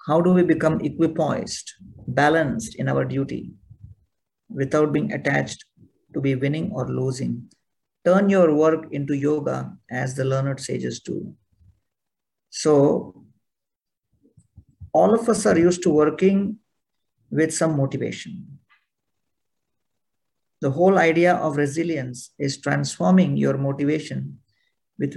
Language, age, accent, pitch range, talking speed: English, 50-69, Indian, 130-165 Hz, 115 wpm